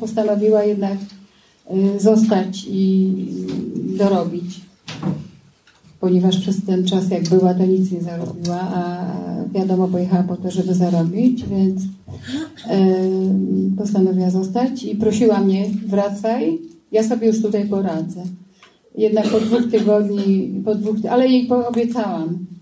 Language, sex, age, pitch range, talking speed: Polish, female, 30-49, 185-220 Hz, 115 wpm